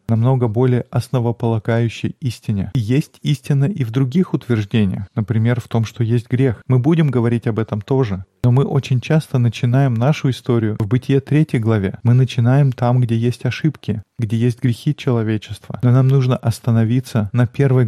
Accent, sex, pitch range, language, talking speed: native, male, 115-130 Hz, Russian, 170 wpm